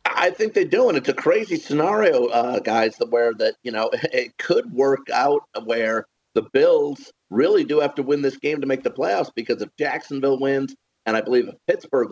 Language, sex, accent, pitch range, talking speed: English, male, American, 115-140 Hz, 210 wpm